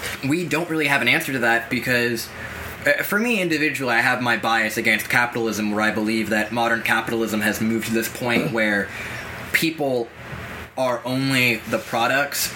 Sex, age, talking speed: male, 20-39, 175 wpm